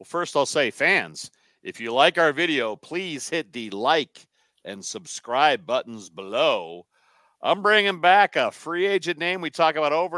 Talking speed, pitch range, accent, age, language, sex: 170 wpm, 150-205 Hz, American, 50-69, English, male